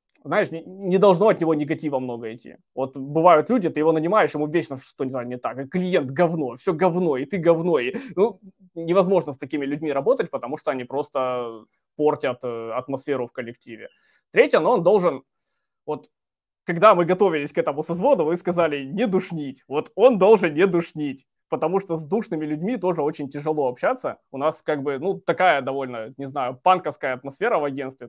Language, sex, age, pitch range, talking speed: Russian, male, 20-39, 135-175 Hz, 180 wpm